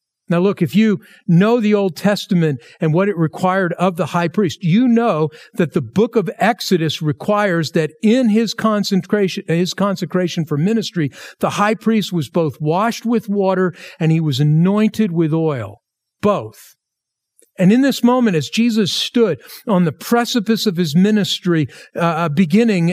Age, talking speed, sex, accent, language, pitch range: 50-69, 160 wpm, male, American, English, 165-220 Hz